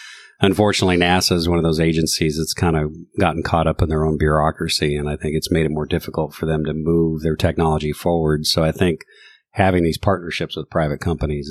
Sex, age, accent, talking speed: male, 40-59, American, 215 wpm